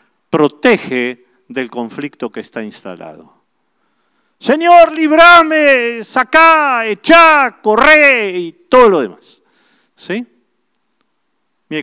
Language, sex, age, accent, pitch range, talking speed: Spanish, male, 50-69, Argentinian, 140-230 Hz, 85 wpm